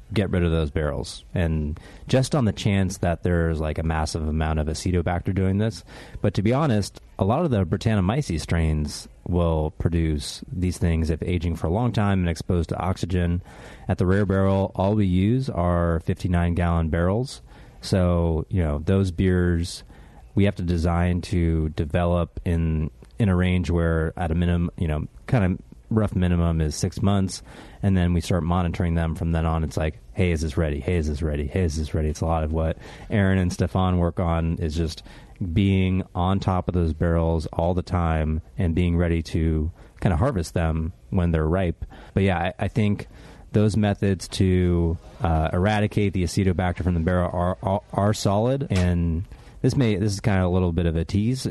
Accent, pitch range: American, 80-100 Hz